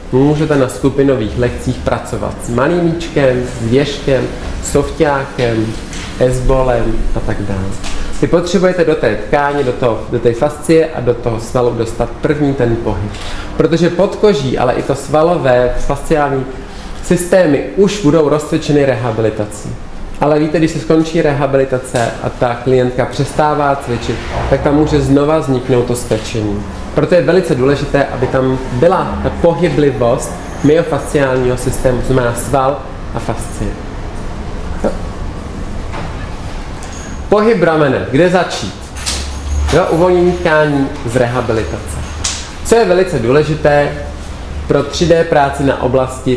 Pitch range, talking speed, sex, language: 110-150 Hz, 125 wpm, male, Czech